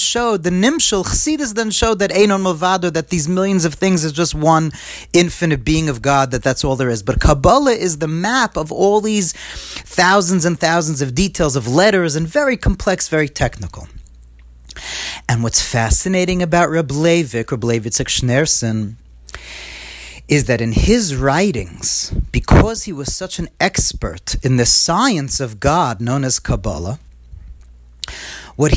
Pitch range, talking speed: 125-190 Hz, 155 wpm